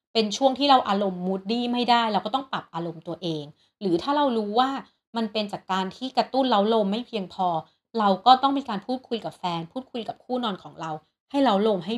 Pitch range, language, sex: 185-245 Hz, Thai, female